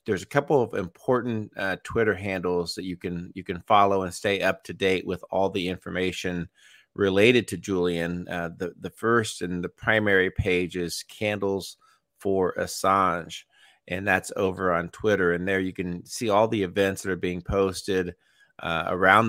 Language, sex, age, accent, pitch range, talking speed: English, male, 30-49, American, 90-100 Hz, 175 wpm